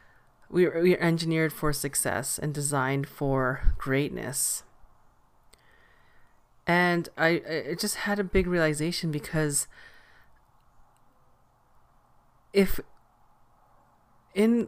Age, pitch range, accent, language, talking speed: 30-49, 145-175 Hz, American, English, 85 wpm